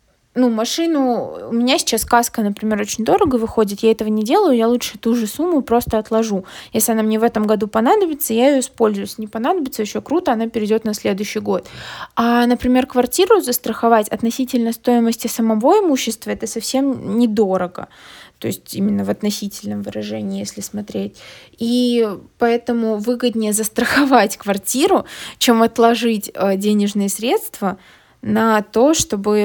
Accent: native